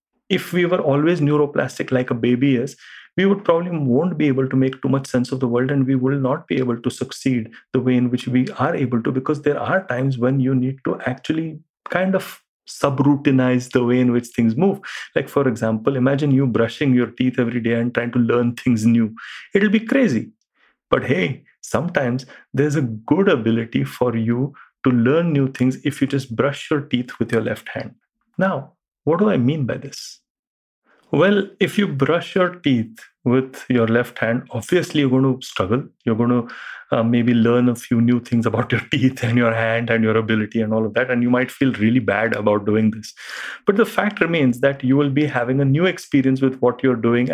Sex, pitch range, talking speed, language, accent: male, 120-155 Hz, 215 wpm, English, Indian